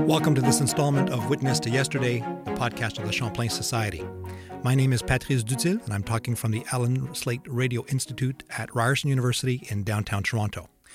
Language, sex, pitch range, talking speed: English, male, 105-140 Hz, 185 wpm